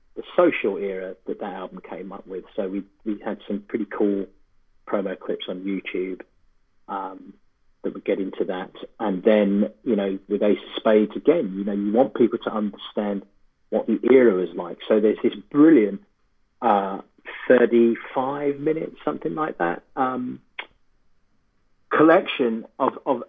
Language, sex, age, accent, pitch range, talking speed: English, male, 40-59, British, 100-130 Hz, 155 wpm